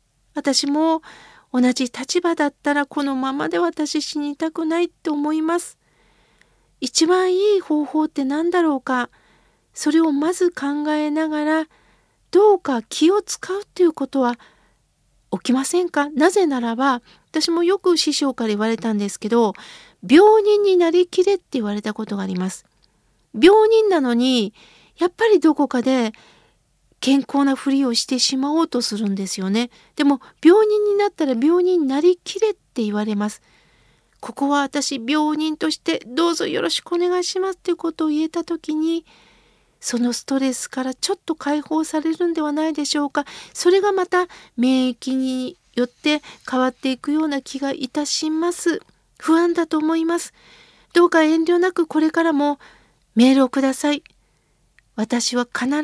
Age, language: 40-59, Japanese